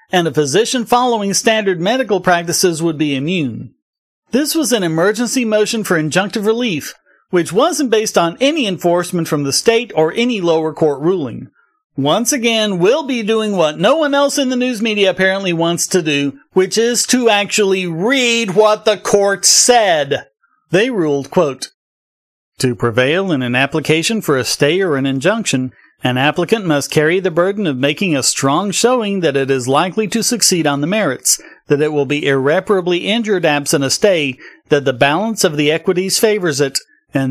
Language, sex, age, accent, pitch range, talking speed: English, male, 40-59, American, 155-225 Hz, 175 wpm